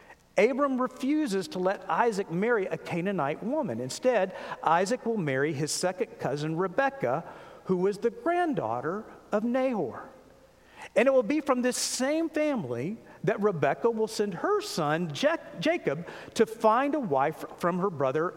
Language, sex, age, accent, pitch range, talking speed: English, male, 50-69, American, 170-265 Hz, 145 wpm